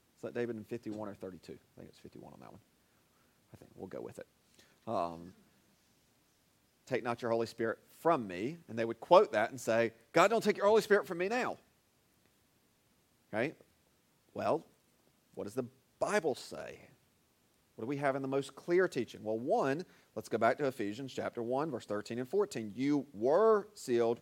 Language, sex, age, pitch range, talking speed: English, male, 40-59, 120-170 Hz, 190 wpm